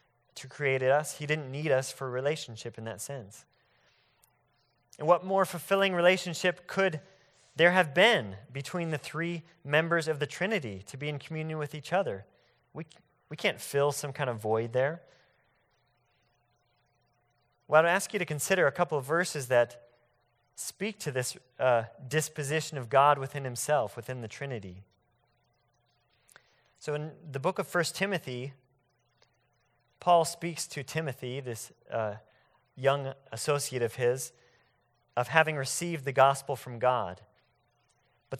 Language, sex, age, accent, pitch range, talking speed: English, male, 30-49, American, 120-155 Hz, 145 wpm